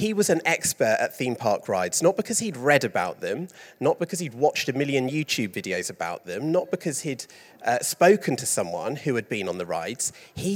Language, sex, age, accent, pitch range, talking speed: English, male, 30-49, British, 110-185 Hz, 215 wpm